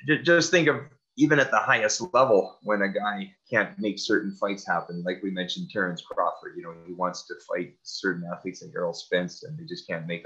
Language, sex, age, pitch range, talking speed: English, male, 30-49, 90-125 Hz, 215 wpm